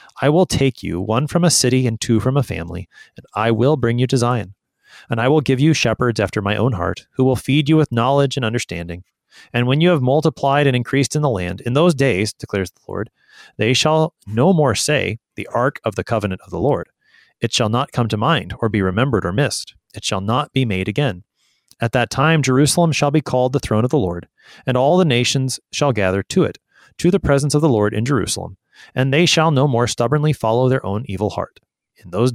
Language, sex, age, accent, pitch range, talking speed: English, male, 30-49, American, 105-140 Hz, 230 wpm